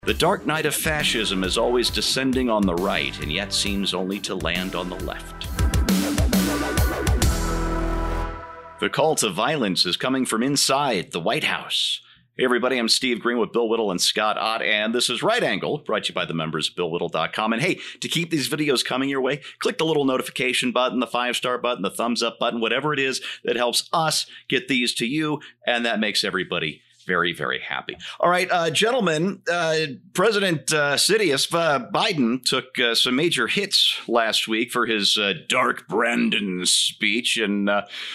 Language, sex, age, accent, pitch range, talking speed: English, male, 50-69, American, 100-155 Hz, 185 wpm